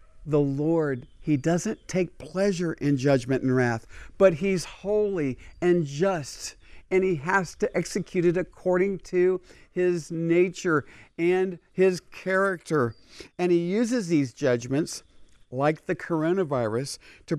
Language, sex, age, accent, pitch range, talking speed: English, male, 50-69, American, 145-185 Hz, 130 wpm